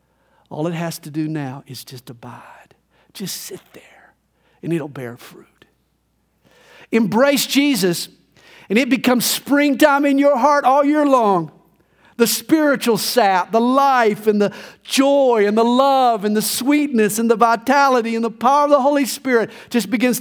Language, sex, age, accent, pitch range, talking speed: English, male, 50-69, American, 160-255 Hz, 160 wpm